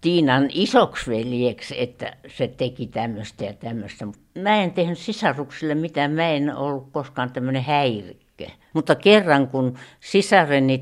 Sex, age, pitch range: female, 60-79, 115-150 Hz